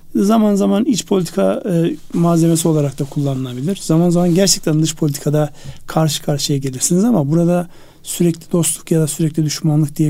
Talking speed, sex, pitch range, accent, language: 155 wpm, male, 150-180 Hz, native, Turkish